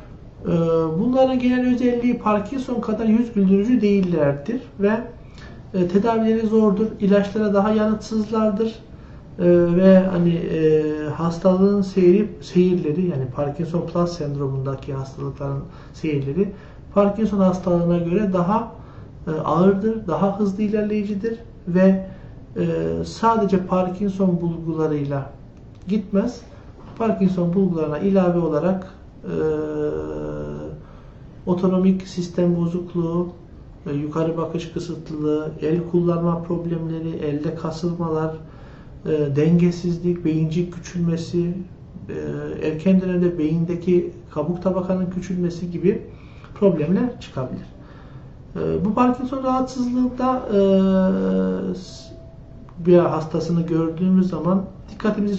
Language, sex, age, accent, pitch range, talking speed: Turkish, male, 60-79, native, 155-200 Hz, 80 wpm